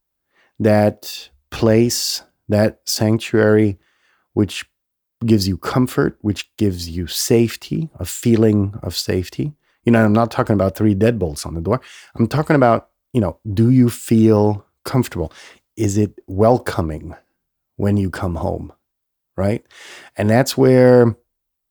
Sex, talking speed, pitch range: male, 130 wpm, 95-120 Hz